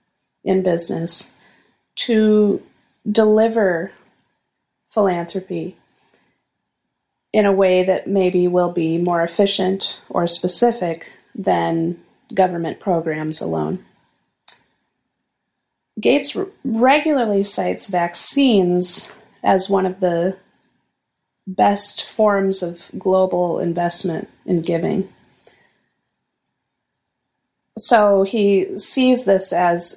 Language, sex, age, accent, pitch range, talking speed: English, female, 30-49, American, 175-200 Hz, 80 wpm